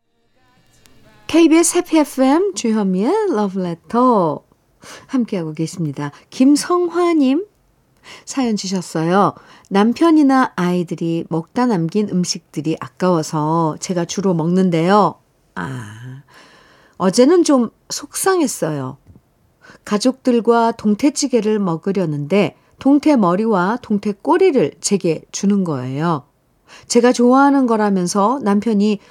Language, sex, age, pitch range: Korean, female, 50-69, 165-250 Hz